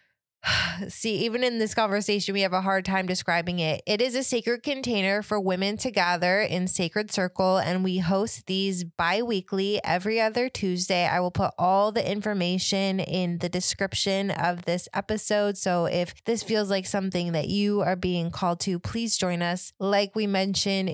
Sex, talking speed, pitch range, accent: female, 180 wpm, 180-205 Hz, American